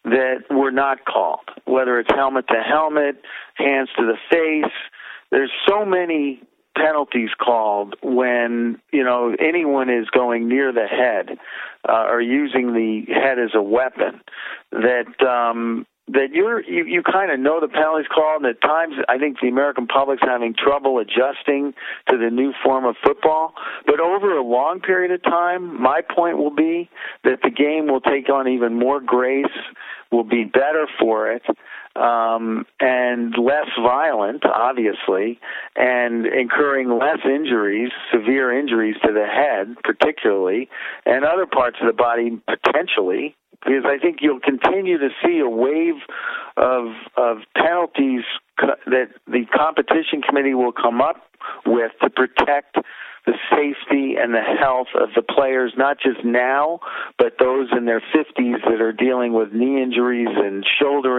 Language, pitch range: English, 120-150 Hz